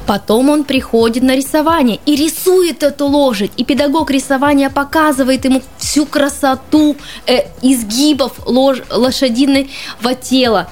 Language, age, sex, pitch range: Russian, 20-39, female, 240-300 Hz